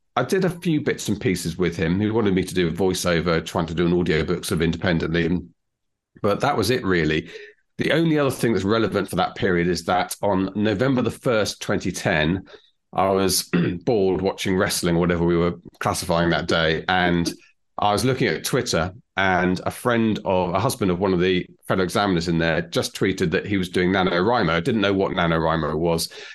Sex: male